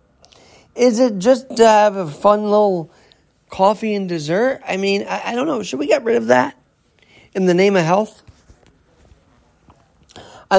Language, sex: English, male